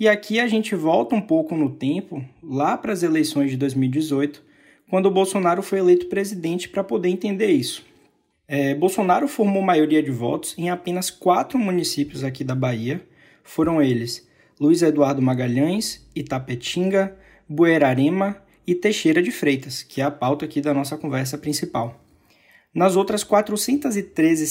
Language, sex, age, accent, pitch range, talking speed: Portuguese, male, 20-39, Brazilian, 145-195 Hz, 145 wpm